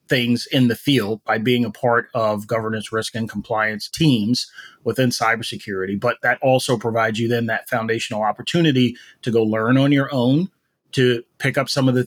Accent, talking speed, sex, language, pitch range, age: American, 185 wpm, male, English, 120-145 Hz, 30-49